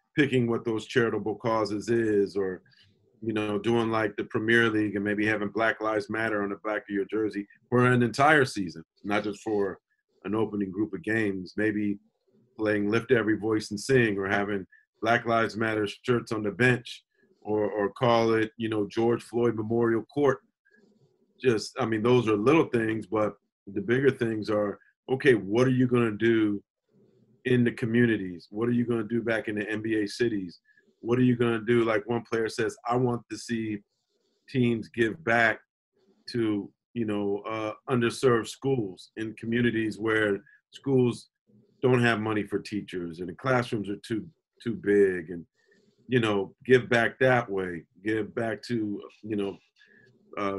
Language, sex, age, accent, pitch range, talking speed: English, male, 40-59, American, 105-120 Hz, 175 wpm